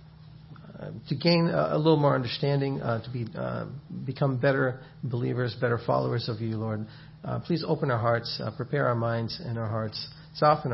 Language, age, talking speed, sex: English, 40-59, 185 wpm, male